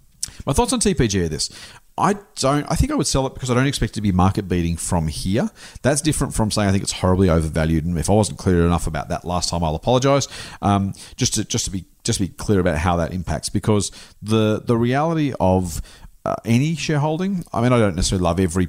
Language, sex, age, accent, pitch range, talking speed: English, male, 40-59, Australian, 90-120 Hz, 240 wpm